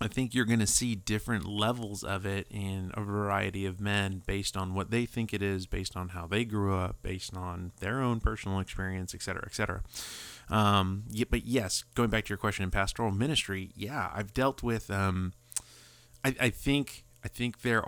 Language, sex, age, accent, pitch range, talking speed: English, male, 30-49, American, 95-115 Hz, 205 wpm